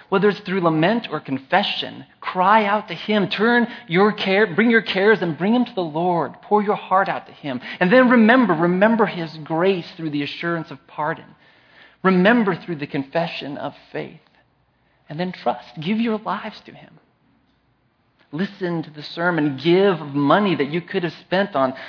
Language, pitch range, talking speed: English, 135-180 Hz, 180 wpm